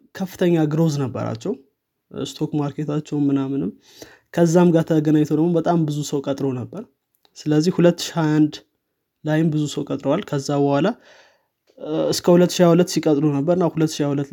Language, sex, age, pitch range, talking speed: Amharic, male, 20-39, 135-165 Hz, 115 wpm